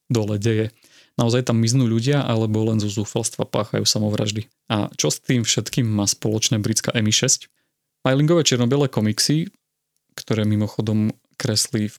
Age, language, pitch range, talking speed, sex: 30-49, Slovak, 110-130 Hz, 140 wpm, male